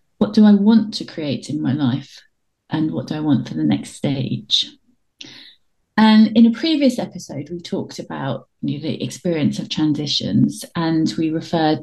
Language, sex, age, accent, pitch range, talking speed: English, female, 30-49, British, 155-210 Hz, 180 wpm